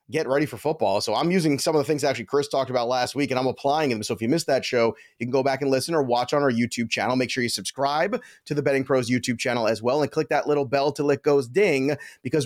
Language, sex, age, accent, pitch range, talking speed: English, male, 30-49, American, 135-160 Hz, 295 wpm